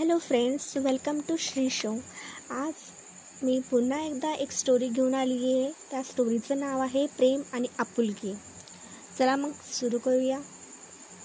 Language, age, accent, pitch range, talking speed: Marathi, 20-39, native, 245-285 Hz, 110 wpm